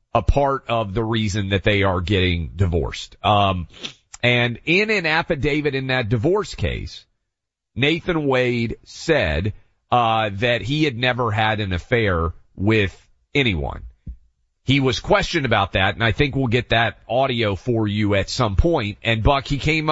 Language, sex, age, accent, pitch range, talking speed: English, male, 40-59, American, 105-145 Hz, 160 wpm